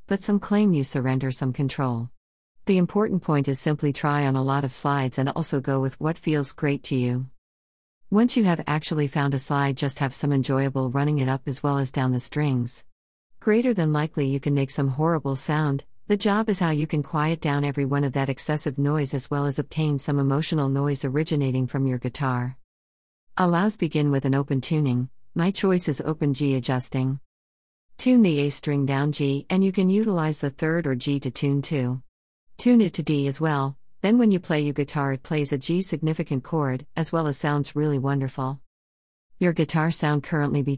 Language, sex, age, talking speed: English, female, 50-69, 205 wpm